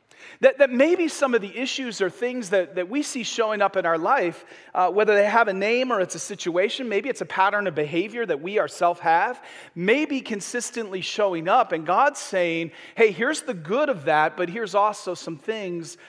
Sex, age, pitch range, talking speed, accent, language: male, 40-59, 175-240 Hz, 215 wpm, American, English